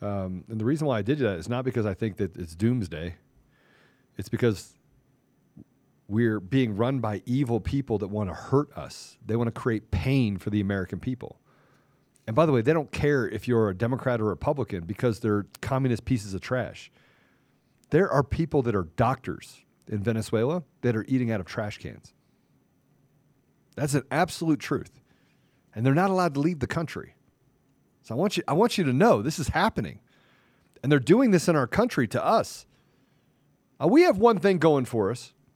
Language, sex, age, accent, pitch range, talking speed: English, male, 40-59, American, 115-175 Hz, 190 wpm